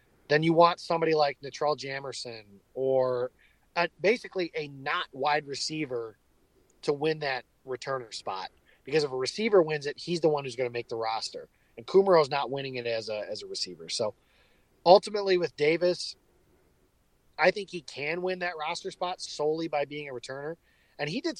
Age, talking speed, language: 30-49, 180 wpm, English